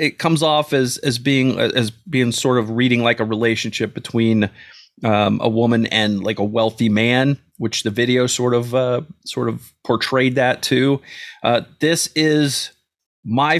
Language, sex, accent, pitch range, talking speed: English, male, American, 115-145 Hz, 170 wpm